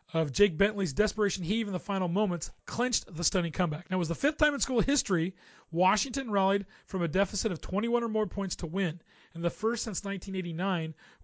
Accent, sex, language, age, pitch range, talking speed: American, male, English, 30-49, 170-215 Hz, 210 wpm